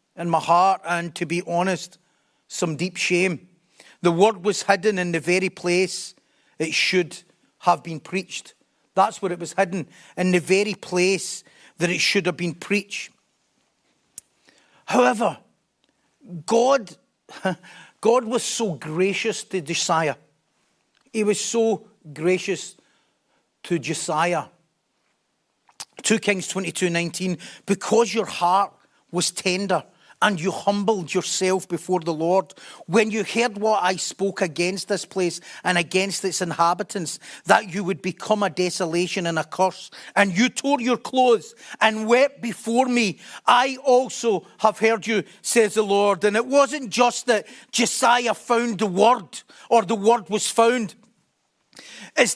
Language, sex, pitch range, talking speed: English, male, 180-230 Hz, 140 wpm